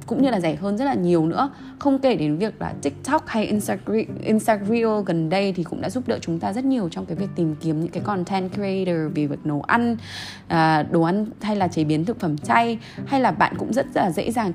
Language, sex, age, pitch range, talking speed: Vietnamese, female, 20-39, 165-230 Hz, 245 wpm